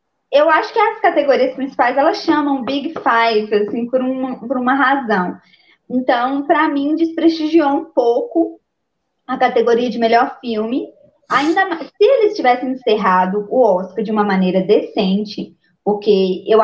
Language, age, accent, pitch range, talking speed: Portuguese, 20-39, Brazilian, 225-305 Hz, 150 wpm